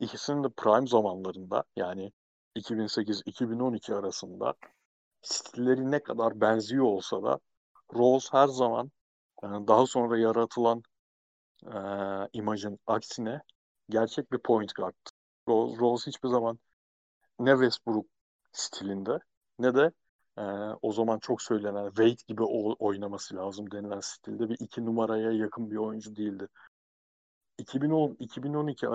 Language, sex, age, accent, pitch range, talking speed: Turkish, male, 50-69, native, 105-130 Hz, 110 wpm